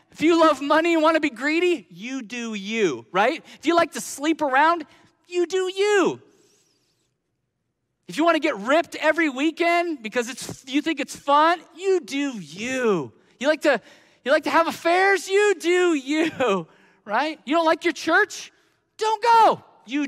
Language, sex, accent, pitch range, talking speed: English, male, American, 250-325 Hz, 175 wpm